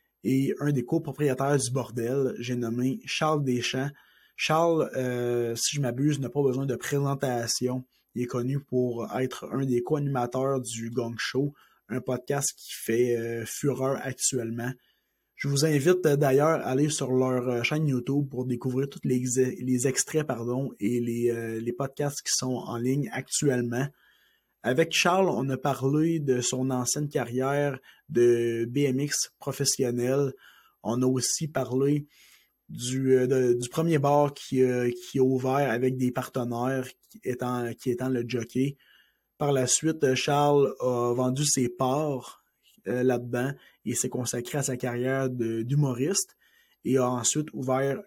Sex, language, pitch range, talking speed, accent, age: male, French, 125-140 Hz, 145 wpm, Canadian, 30-49